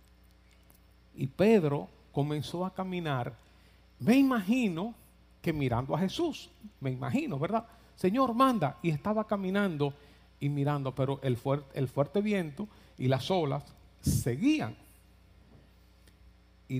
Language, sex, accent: Spanish, male, American